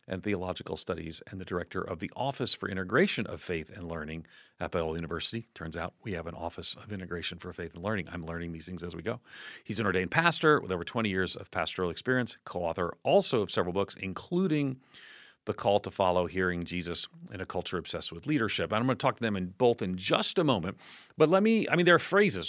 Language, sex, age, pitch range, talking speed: English, male, 40-59, 90-145 Hz, 230 wpm